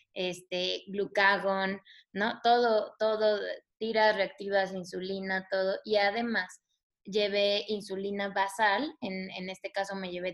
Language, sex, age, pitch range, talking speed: Spanish, female, 20-39, 185-215 Hz, 115 wpm